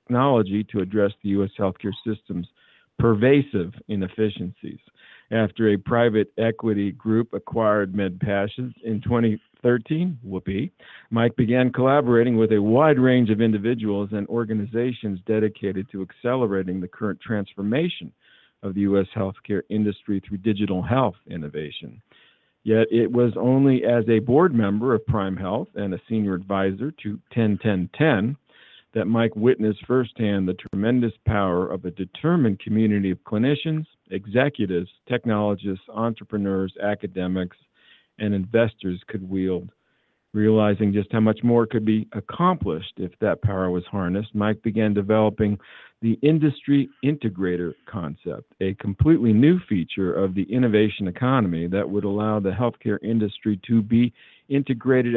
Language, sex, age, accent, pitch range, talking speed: English, male, 50-69, American, 100-120 Hz, 130 wpm